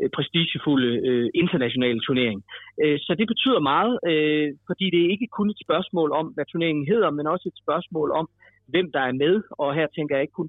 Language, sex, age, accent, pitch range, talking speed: Danish, male, 30-49, native, 140-180 Hz, 205 wpm